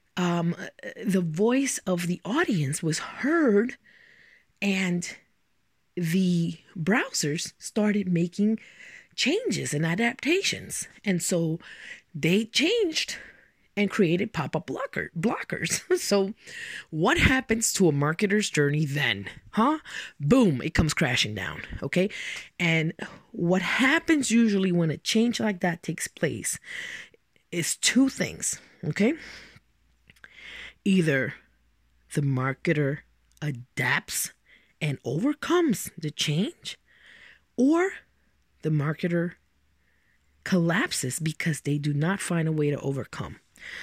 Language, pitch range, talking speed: English, 150-220 Hz, 105 wpm